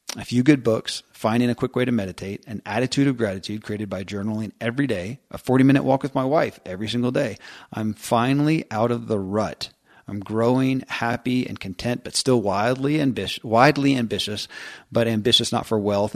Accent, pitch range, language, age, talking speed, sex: American, 100-120 Hz, English, 40-59, 190 wpm, male